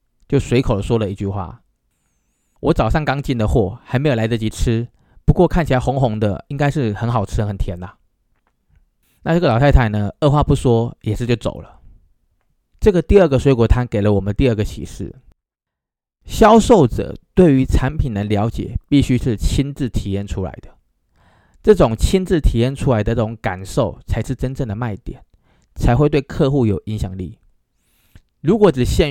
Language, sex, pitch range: Chinese, male, 100-140 Hz